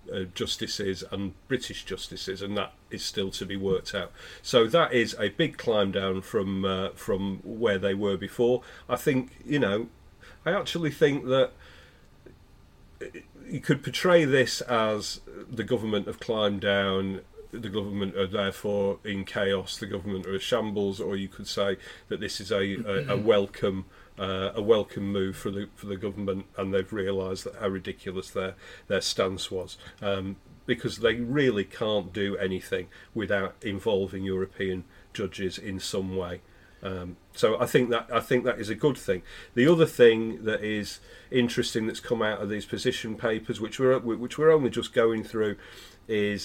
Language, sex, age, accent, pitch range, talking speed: English, male, 40-59, British, 95-115 Hz, 175 wpm